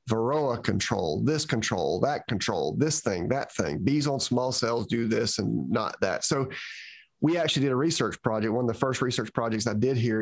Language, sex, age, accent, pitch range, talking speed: English, male, 30-49, American, 110-140 Hz, 205 wpm